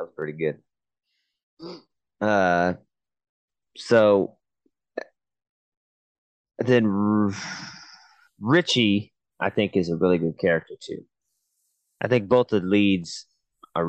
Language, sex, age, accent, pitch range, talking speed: English, male, 30-49, American, 90-115 Hz, 100 wpm